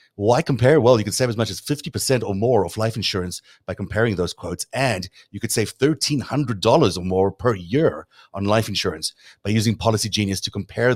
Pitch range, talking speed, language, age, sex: 100-125 Hz, 205 wpm, English, 30-49, male